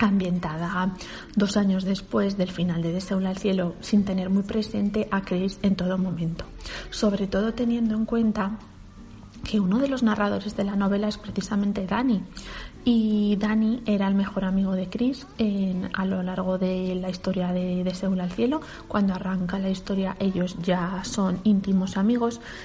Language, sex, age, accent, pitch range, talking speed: Spanish, female, 30-49, Spanish, 185-215 Hz, 165 wpm